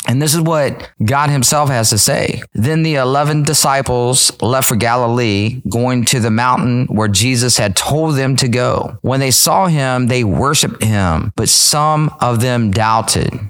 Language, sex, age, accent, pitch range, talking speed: English, male, 30-49, American, 110-145 Hz, 175 wpm